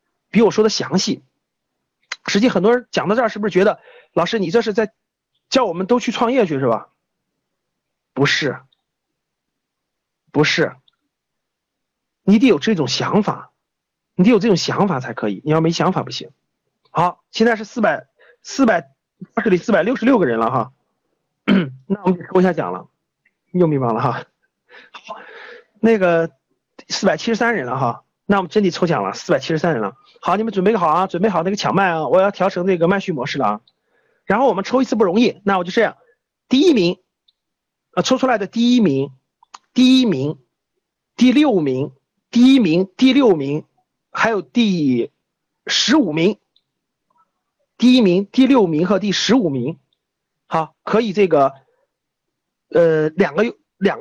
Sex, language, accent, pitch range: male, Chinese, native, 165-235 Hz